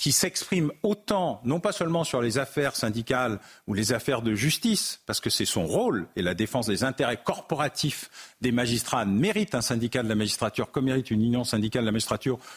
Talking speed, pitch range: 200 wpm, 125-165 Hz